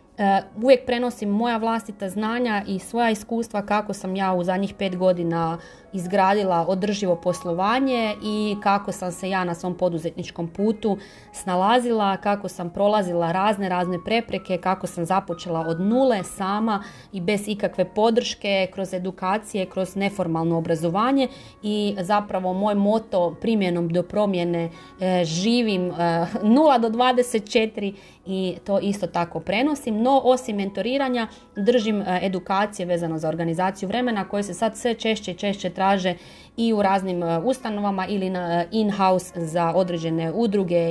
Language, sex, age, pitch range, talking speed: Croatian, female, 30-49, 180-215 Hz, 135 wpm